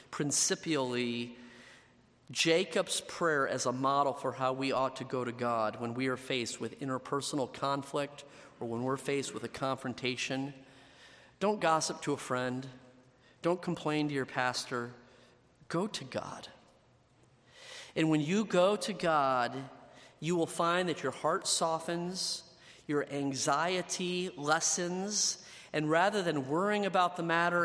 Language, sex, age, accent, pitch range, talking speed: English, male, 40-59, American, 135-175 Hz, 140 wpm